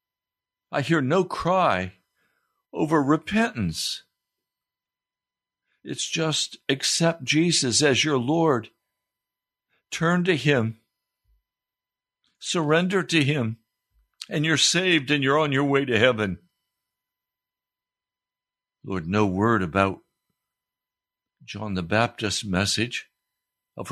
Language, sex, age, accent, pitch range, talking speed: English, male, 60-79, American, 100-150 Hz, 95 wpm